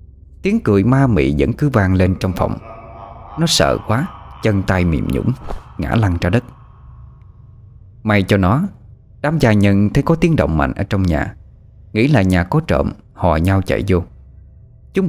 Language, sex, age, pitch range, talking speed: Vietnamese, male, 20-39, 95-140 Hz, 180 wpm